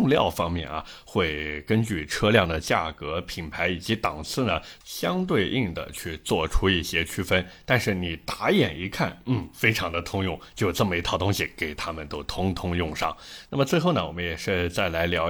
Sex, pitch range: male, 85-110 Hz